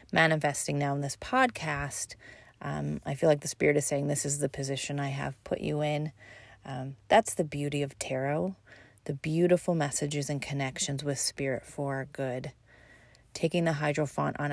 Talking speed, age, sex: 175 wpm, 30-49, female